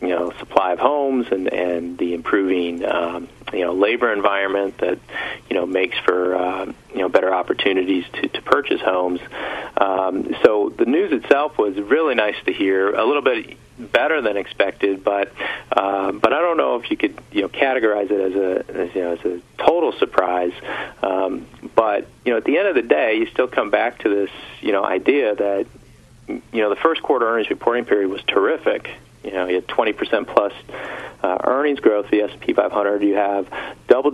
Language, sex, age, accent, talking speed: English, male, 40-59, American, 200 wpm